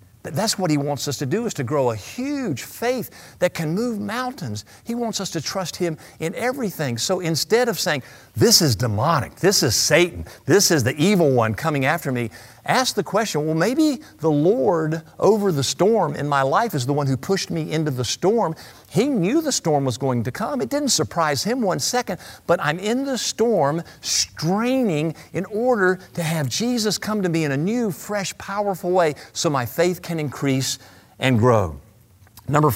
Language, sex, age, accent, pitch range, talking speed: English, male, 50-69, American, 125-175 Hz, 195 wpm